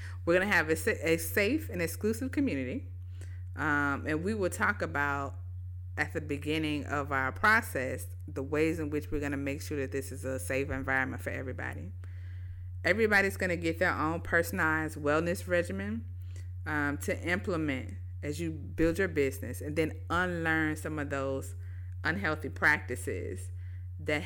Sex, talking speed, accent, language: female, 160 wpm, American, English